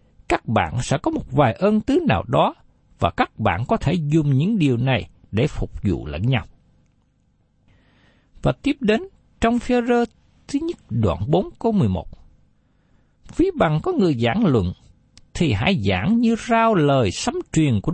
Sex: male